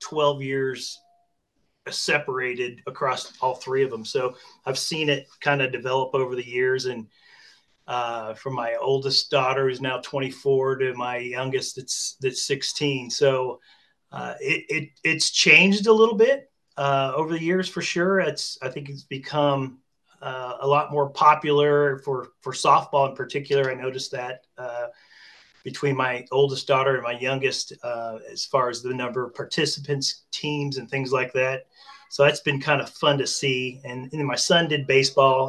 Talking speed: 170 wpm